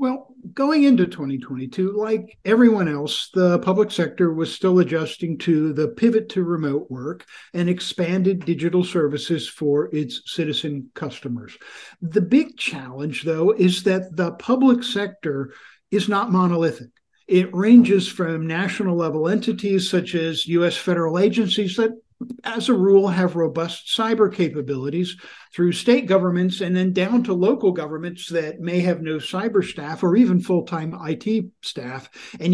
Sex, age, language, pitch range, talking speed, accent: male, 50-69, English, 160-195 Hz, 145 wpm, American